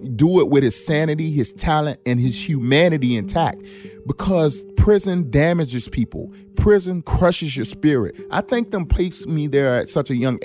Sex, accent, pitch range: male, American, 120-175 Hz